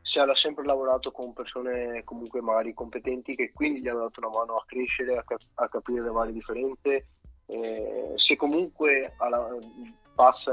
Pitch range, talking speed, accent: 115-130 Hz, 170 wpm, native